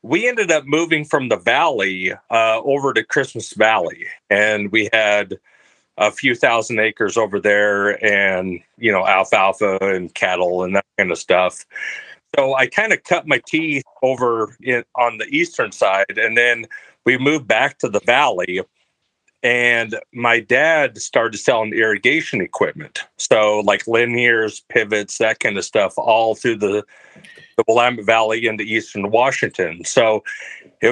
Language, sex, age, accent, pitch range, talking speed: English, male, 40-59, American, 105-125 Hz, 150 wpm